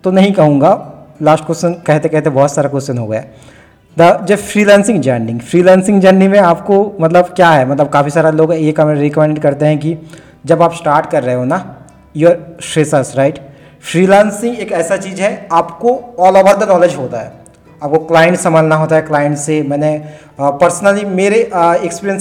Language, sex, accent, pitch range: Hindi, male, native, 155-195 Hz